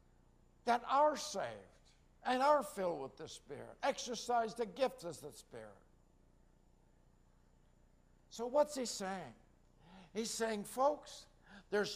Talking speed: 115 wpm